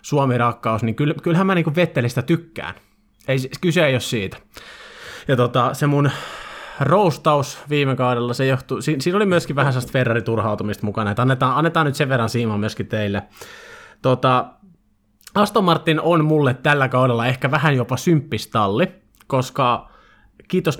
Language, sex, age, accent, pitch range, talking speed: Finnish, male, 20-39, native, 120-155 Hz, 145 wpm